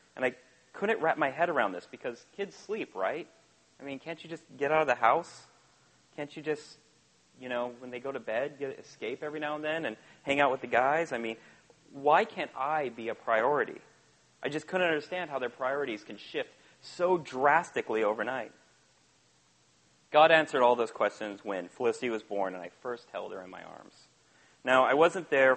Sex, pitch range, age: male, 105-140 Hz, 30-49